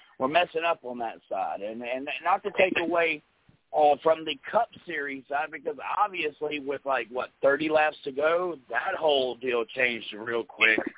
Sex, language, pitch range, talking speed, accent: male, English, 130-175 Hz, 180 wpm, American